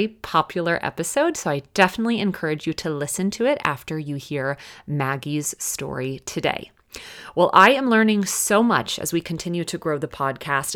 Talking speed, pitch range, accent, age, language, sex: 165 wpm, 150-205 Hz, American, 30-49, English, female